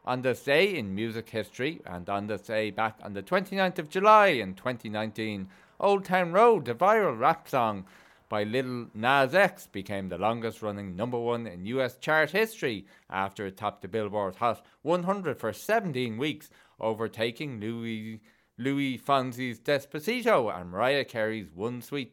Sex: male